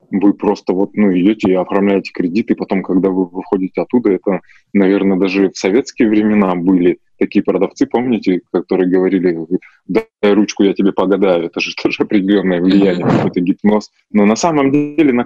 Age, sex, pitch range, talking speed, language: 20-39, male, 95-115 Hz, 170 wpm, Russian